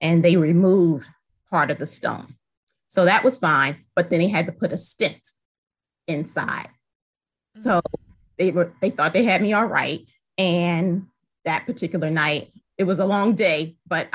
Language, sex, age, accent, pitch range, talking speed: English, female, 30-49, American, 165-205 Hz, 170 wpm